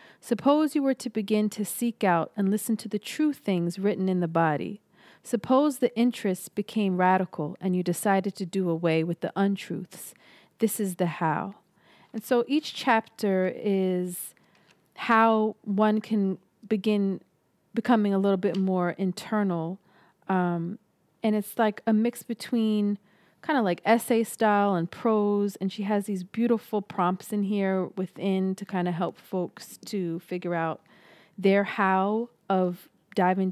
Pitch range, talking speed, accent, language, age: 185-220 Hz, 155 wpm, American, English, 40-59